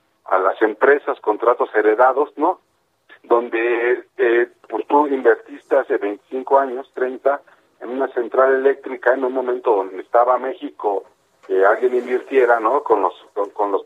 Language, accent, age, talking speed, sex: Spanish, Mexican, 40-59, 150 wpm, male